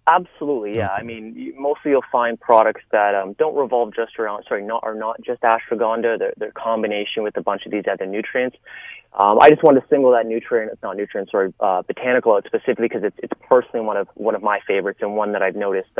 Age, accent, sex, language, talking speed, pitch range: 30-49, American, male, English, 230 wpm, 110-150 Hz